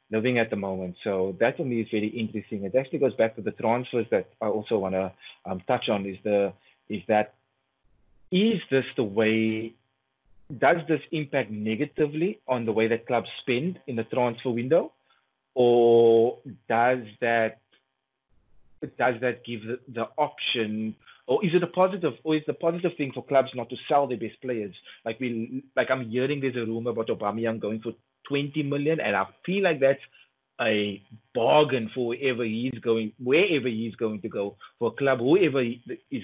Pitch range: 115-140 Hz